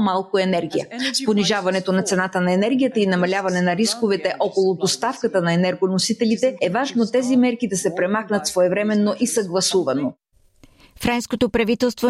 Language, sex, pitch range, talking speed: Bulgarian, female, 195-225 Hz, 135 wpm